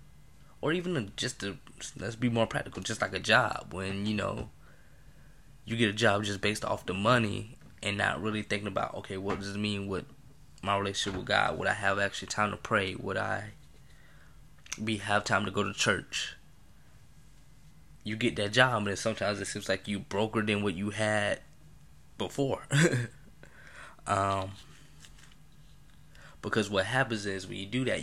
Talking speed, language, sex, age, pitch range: 170 wpm, English, male, 10-29, 100-115 Hz